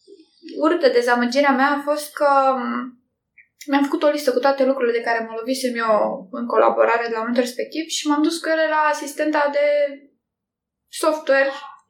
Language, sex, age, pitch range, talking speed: English, female, 20-39, 275-330 Hz, 170 wpm